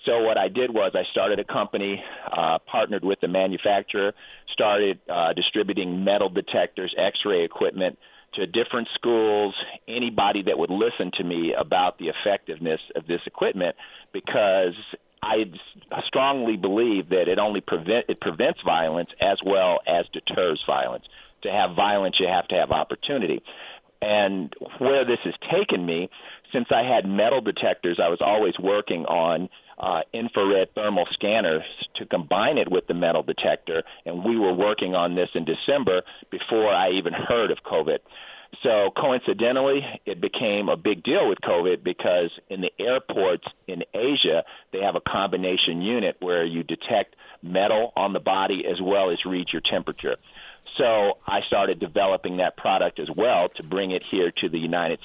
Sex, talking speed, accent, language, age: male, 160 wpm, American, English, 50-69